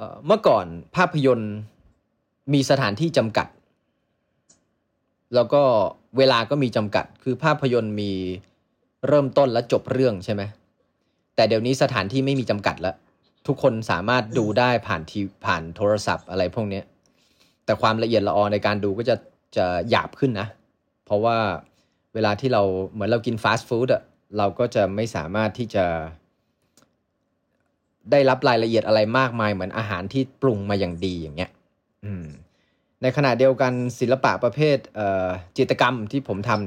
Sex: male